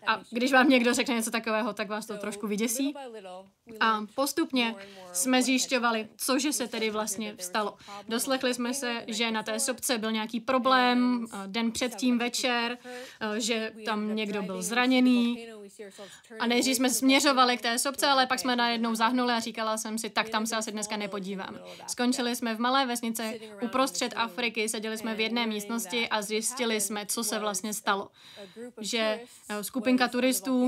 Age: 20-39